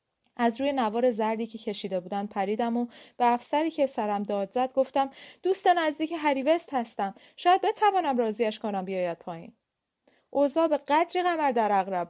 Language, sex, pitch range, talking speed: Persian, female, 215-295 Hz, 160 wpm